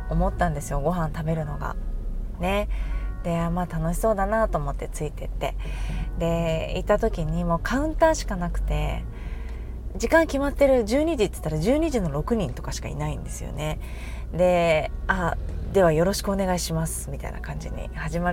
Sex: female